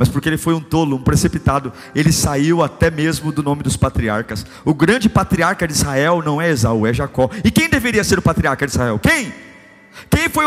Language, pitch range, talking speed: Portuguese, 230-285 Hz, 210 wpm